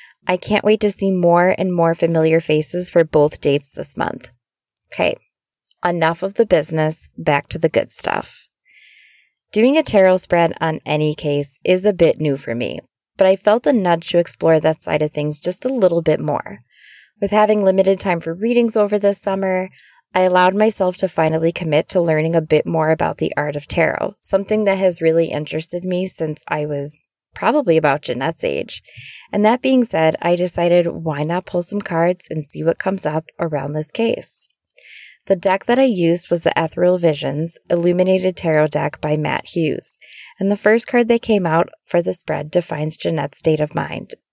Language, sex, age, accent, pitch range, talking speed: English, female, 20-39, American, 155-195 Hz, 190 wpm